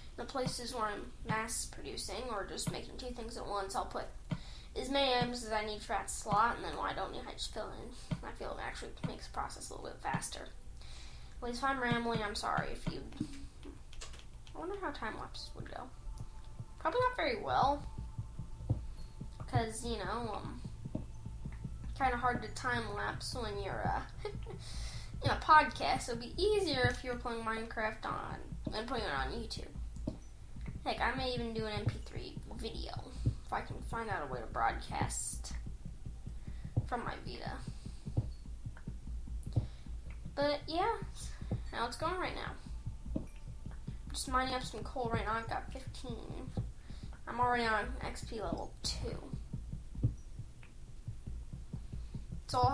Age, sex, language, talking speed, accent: 10-29, female, English, 155 wpm, American